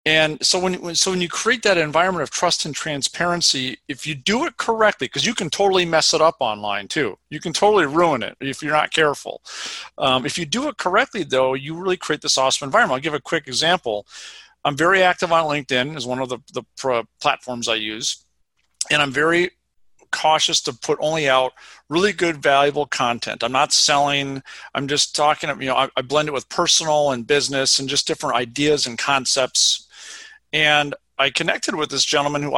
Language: English